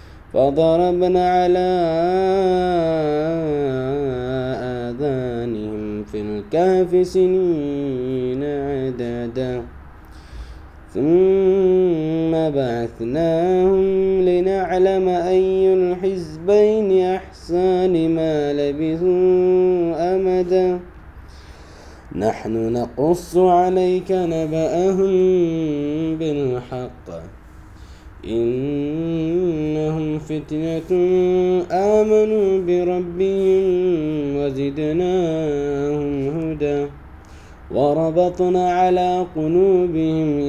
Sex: male